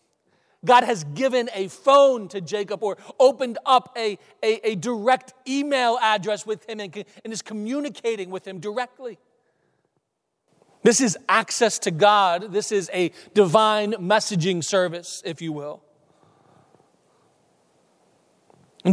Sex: male